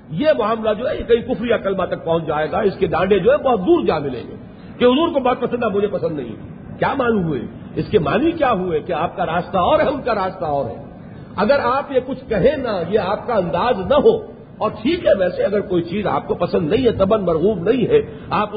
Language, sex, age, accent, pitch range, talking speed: English, male, 50-69, Indian, 190-260 Hz, 240 wpm